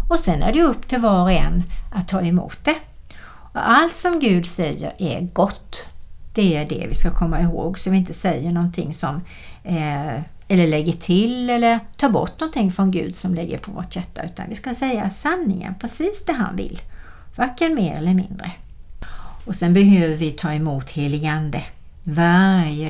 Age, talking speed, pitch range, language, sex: 60-79, 180 wpm, 170-225 Hz, Swedish, female